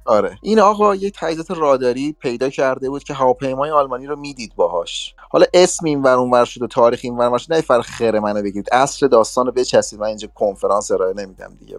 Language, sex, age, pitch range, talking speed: Persian, male, 30-49, 115-165 Hz, 205 wpm